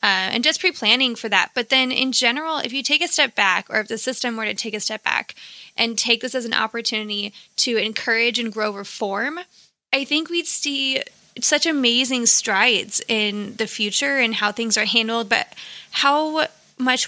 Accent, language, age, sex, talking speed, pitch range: American, English, 20-39, female, 195 wpm, 215-255 Hz